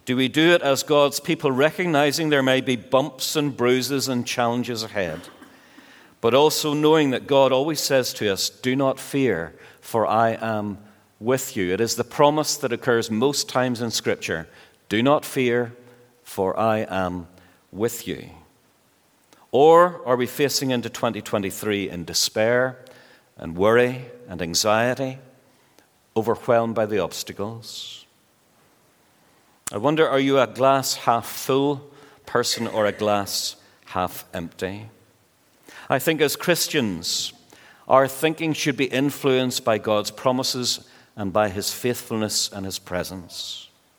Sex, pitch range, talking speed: male, 105-135 Hz, 140 wpm